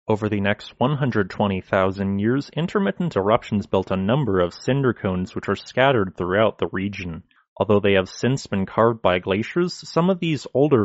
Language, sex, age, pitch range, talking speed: English, male, 30-49, 100-130 Hz, 170 wpm